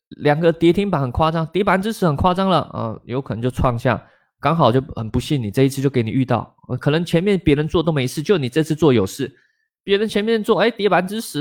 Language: Chinese